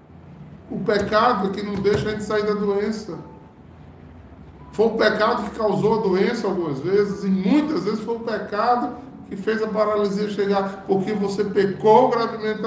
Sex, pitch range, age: male, 160-210 Hz, 20-39